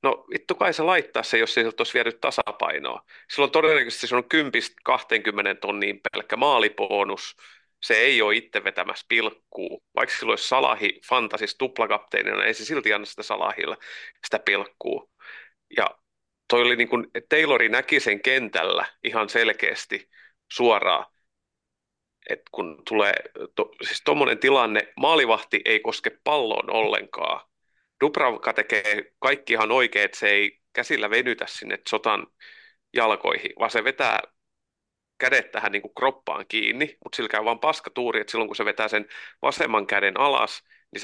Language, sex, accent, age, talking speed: Finnish, male, native, 30-49, 150 wpm